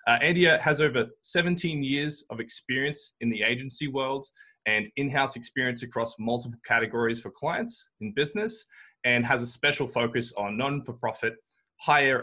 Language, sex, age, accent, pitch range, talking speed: English, male, 20-39, Australian, 115-145 Hz, 145 wpm